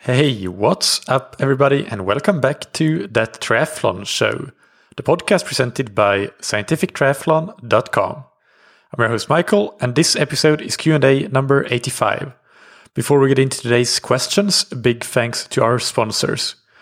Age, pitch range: 30-49, 110-140 Hz